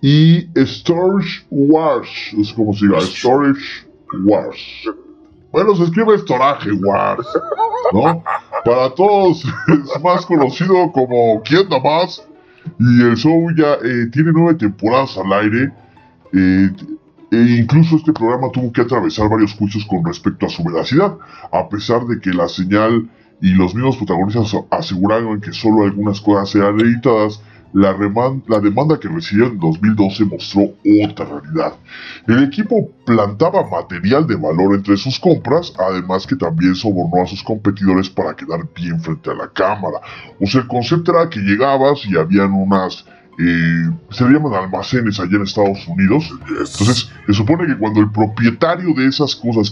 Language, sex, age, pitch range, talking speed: Spanish, female, 30-49, 100-140 Hz, 155 wpm